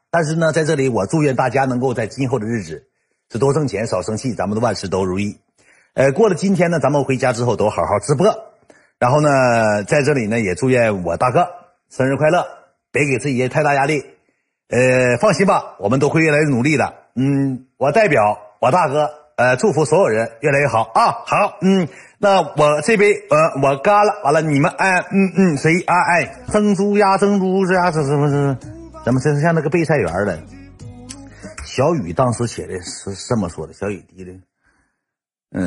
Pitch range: 95-150 Hz